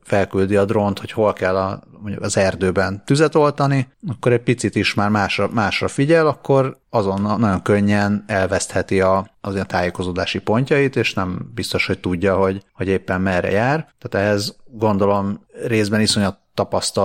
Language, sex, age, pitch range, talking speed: Hungarian, male, 30-49, 95-110 Hz, 160 wpm